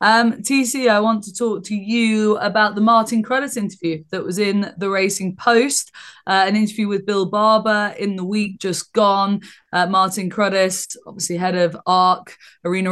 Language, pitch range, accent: English, 180-210 Hz, British